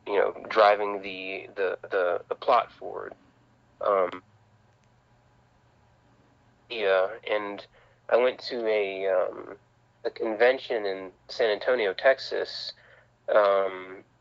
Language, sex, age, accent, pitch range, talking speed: English, male, 30-49, American, 100-120 Hz, 100 wpm